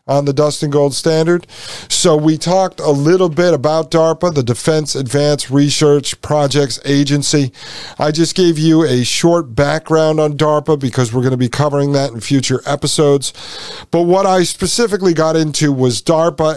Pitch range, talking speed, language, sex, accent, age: 125-155 Hz, 170 wpm, English, male, American, 50-69